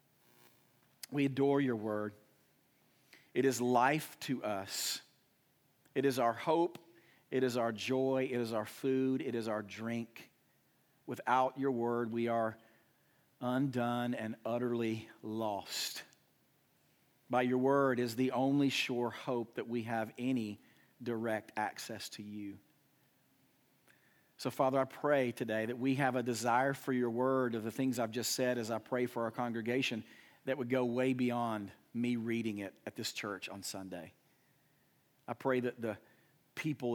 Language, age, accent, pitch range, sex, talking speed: English, 40-59, American, 115-135 Hz, male, 150 wpm